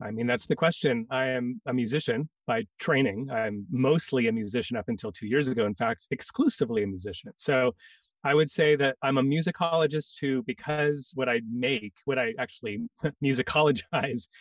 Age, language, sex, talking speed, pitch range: 30-49, English, male, 175 wpm, 125-165 Hz